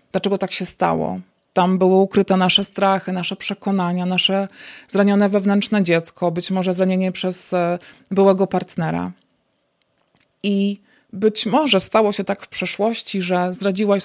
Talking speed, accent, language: 130 wpm, native, Polish